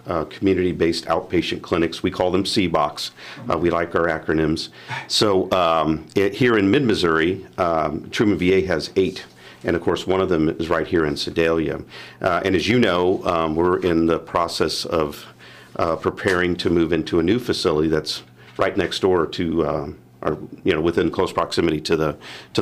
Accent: American